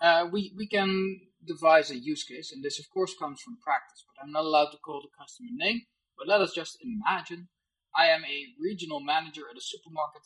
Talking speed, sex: 215 wpm, male